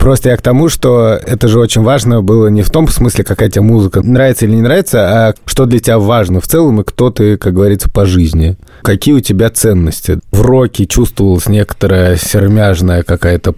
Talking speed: 200 wpm